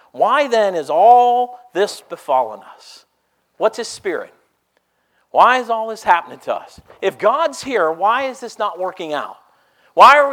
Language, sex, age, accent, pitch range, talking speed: English, male, 50-69, American, 185-285 Hz, 165 wpm